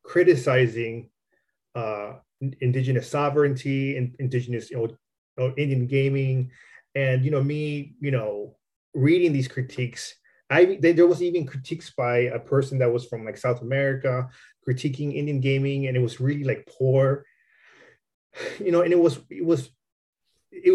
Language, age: English, 30-49